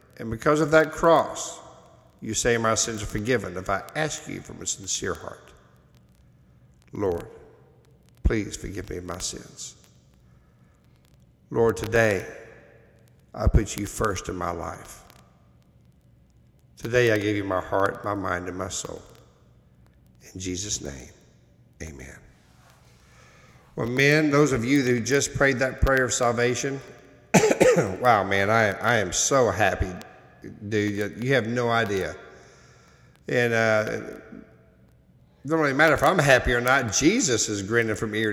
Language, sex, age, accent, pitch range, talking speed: English, male, 60-79, American, 100-140 Hz, 140 wpm